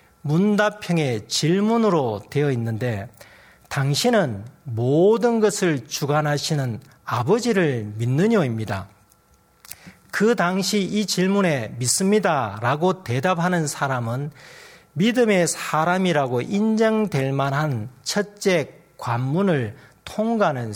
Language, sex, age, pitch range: Korean, male, 40-59, 130-205 Hz